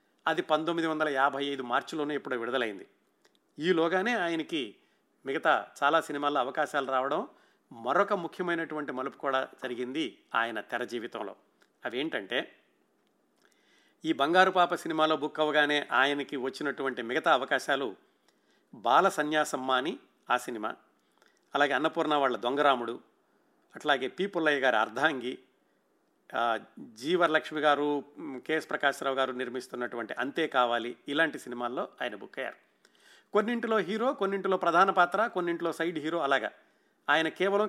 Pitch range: 140-175 Hz